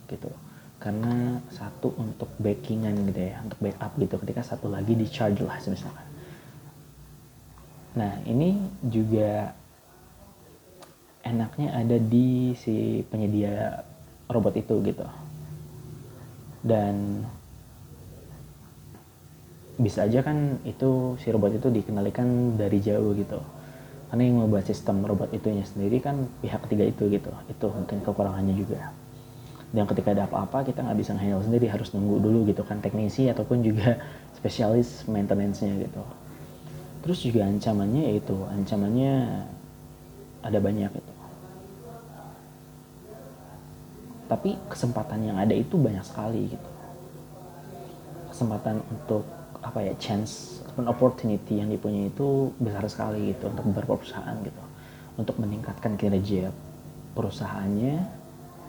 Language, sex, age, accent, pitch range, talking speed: Indonesian, male, 20-39, native, 105-130 Hz, 115 wpm